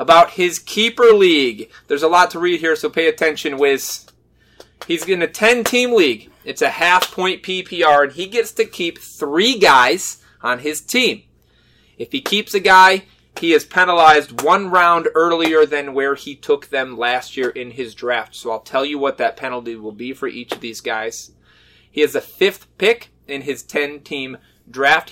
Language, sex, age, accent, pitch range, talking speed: English, male, 30-49, American, 135-225 Hz, 185 wpm